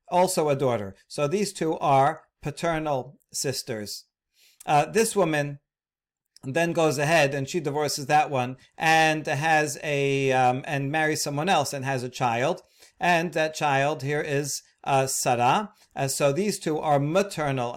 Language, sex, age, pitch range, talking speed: English, male, 40-59, 135-165 Hz, 150 wpm